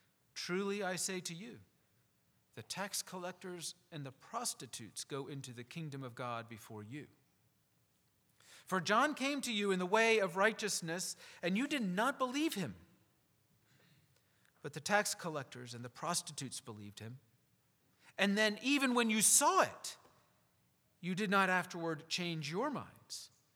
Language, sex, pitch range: English, male, 155-215 Hz